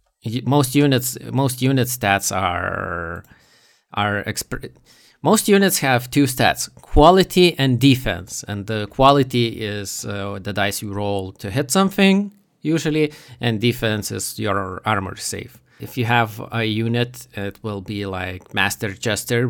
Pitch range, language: 100-130 Hz, English